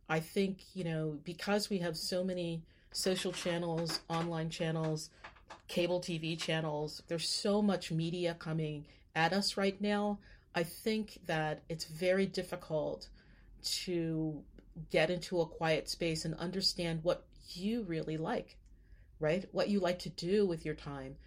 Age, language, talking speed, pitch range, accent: 30-49, English, 145 wpm, 155-180 Hz, American